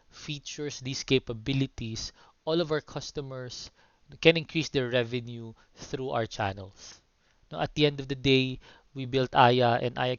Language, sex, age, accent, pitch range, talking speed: English, male, 20-39, Filipino, 115-135 Hz, 145 wpm